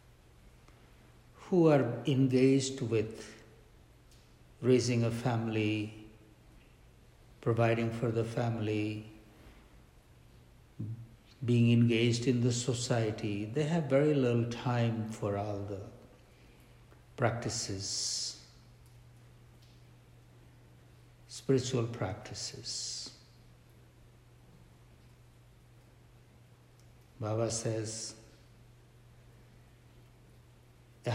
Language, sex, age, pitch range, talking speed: English, male, 60-79, 110-120 Hz, 60 wpm